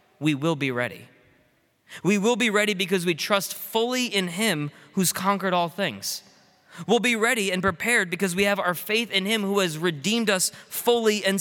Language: English